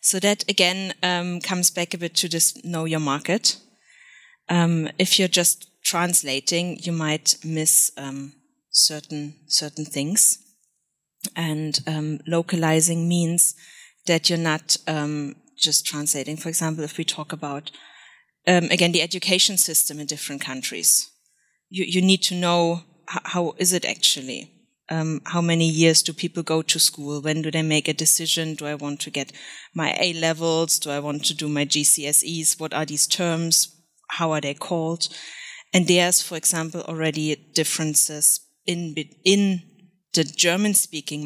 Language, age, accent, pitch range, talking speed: English, 30-49, German, 155-175 Hz, 155 wpm